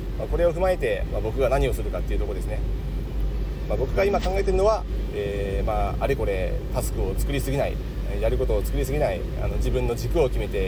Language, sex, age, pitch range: Japanese, male, 30-49, 105-145 Hz